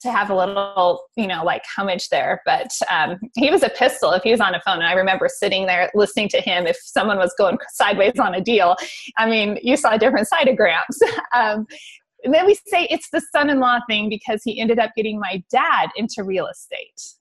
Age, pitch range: 30-49, 195-265 Hz